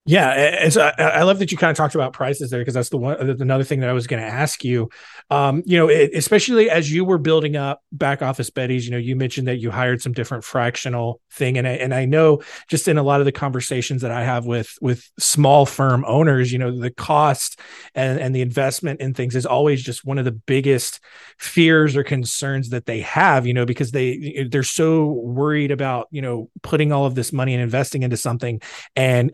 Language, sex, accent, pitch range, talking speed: English, male, American, 130-160 Hz, 230 wpm